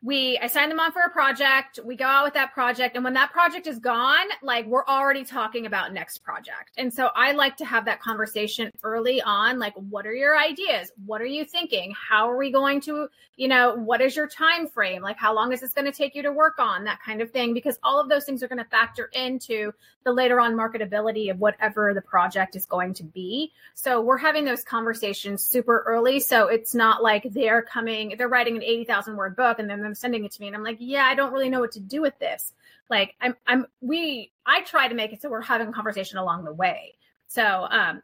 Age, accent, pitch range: 30-49, American, 225-275 Hz